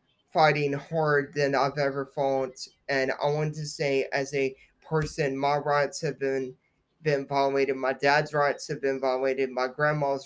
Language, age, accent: English, 20-39, American